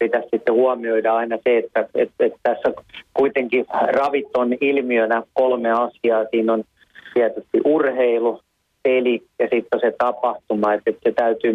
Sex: male